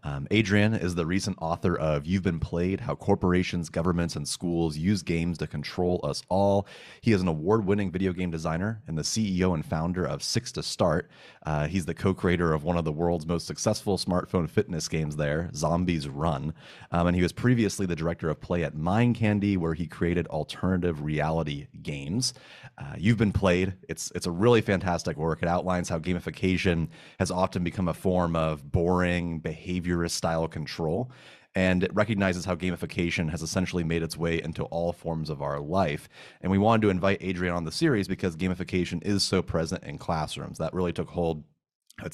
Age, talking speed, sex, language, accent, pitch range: 30-49, 190 wpm, male, English, American, 80-95 Hz